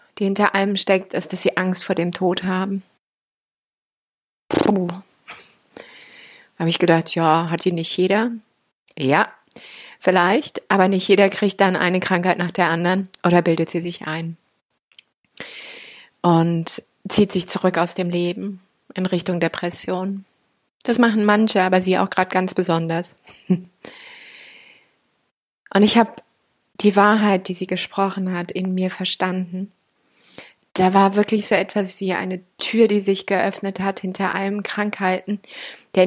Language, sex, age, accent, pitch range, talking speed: German, female, 20-39, German, 185-205 Hz, 140 wpm